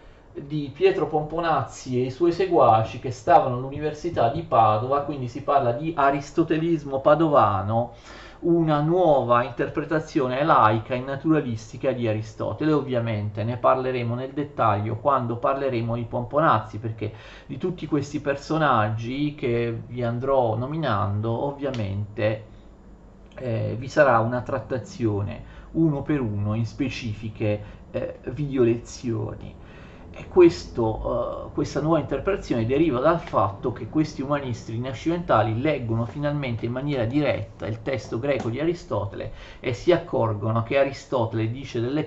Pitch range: 110-145 Hz